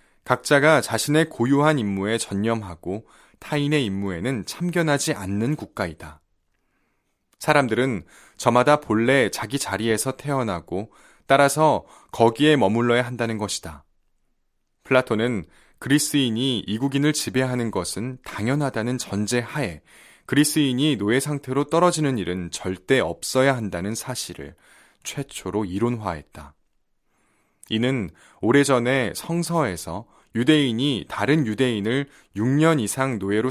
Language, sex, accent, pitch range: Korean, male, native, 100-140 Hz